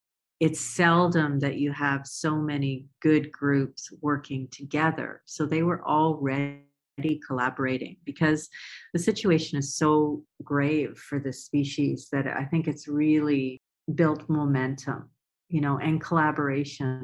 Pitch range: 140-155 Hz